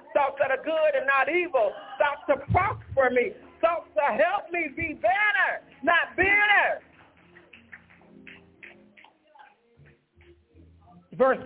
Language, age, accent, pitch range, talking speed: English, 50-69, American, 285-360 Hz, 105 wpm